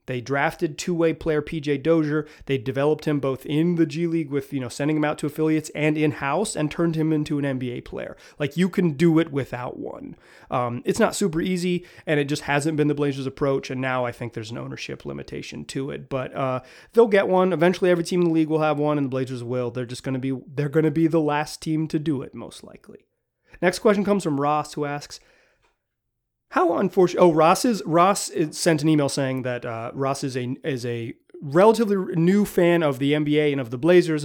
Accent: American